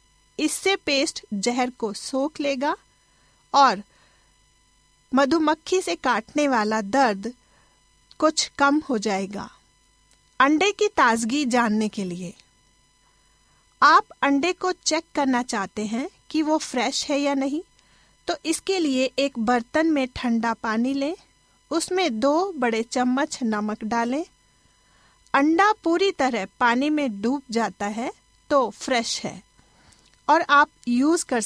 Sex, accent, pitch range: female, native, 230-305 Hz